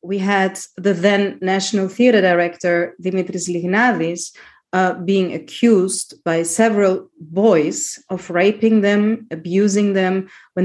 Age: 30-49